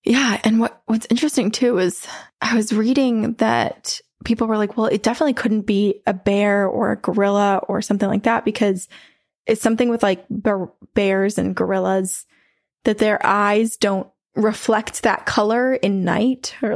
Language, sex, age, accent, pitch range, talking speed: English, female, 20-39, American, 200-235 Hz, 160 wpm